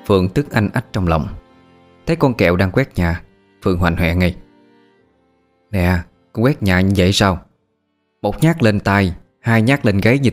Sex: male